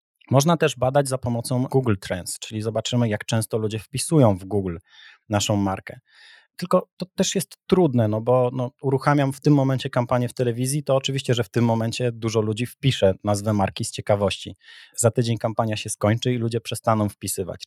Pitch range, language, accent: 105-135 Hz, Polish, native